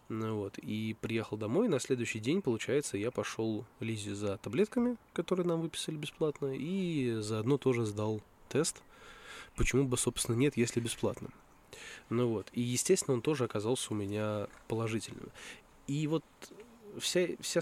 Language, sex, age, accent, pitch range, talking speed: Russian, male, 20-39, native, 110-140 Hz, 145 wpm